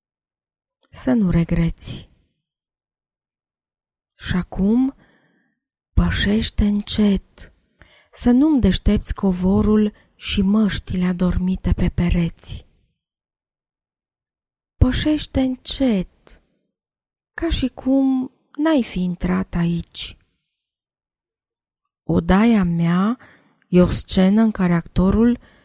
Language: Romanian